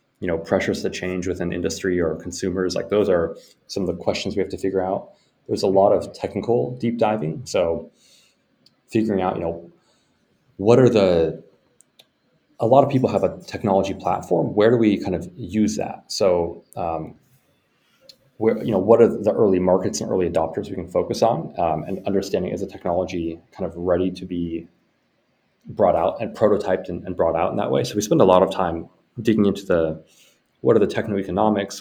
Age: 30-49